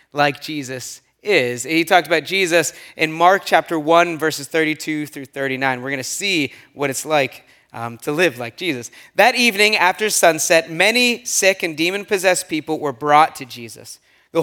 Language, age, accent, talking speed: English, 30-49, American, 175 wpm